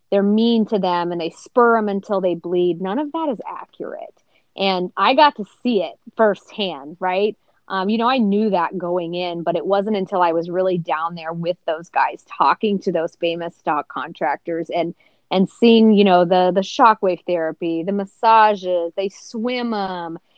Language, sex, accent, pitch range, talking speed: English, female, American, 175-215 Hz, 190 wpm